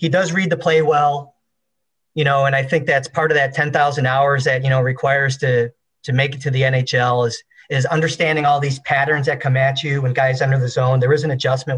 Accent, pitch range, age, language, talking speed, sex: American, 130-160 Hz, 40-59, English, 240 wpm, male